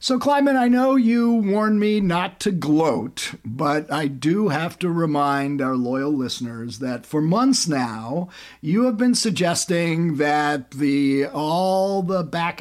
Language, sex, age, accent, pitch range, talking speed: English, male, 50-69, American, 130-185 Hz, 150 wpm